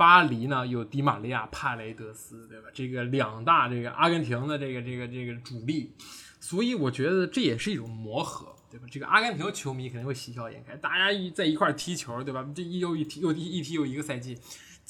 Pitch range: 125-180 Hz